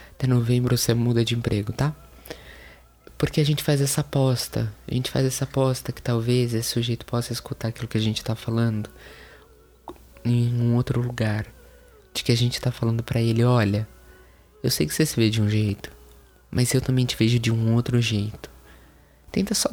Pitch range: 100-120 Hz